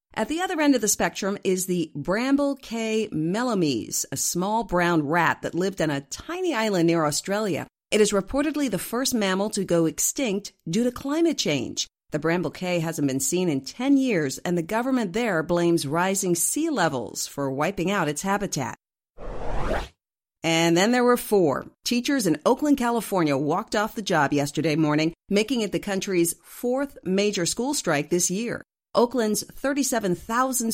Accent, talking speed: American, 170 wpm